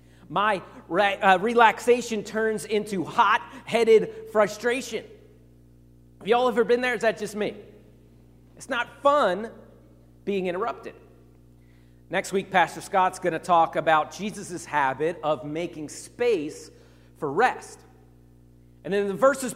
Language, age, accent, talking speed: English, 40-59, American, 130 wpm